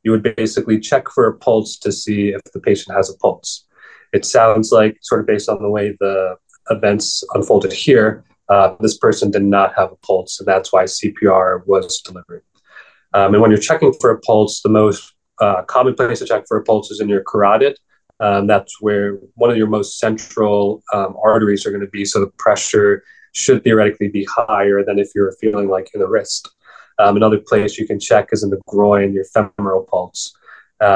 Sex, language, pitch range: male, English, 100-110 Hz